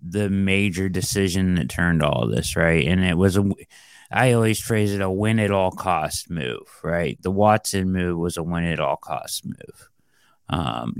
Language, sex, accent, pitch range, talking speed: English, male, American, 90-110 Hz, 185 wpm